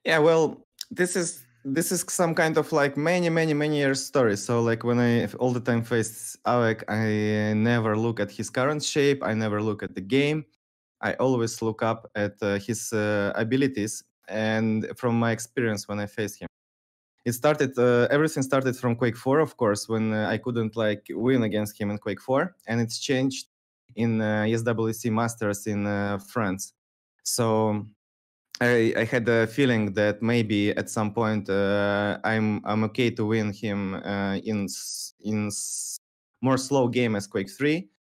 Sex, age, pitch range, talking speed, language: male, 20-39, 105-130 Hz, 175 wpm, English